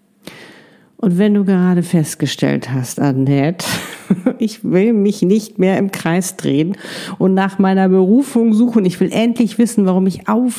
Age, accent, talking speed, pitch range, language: 50-69, German, 155 wpm, 180-215 Hz, German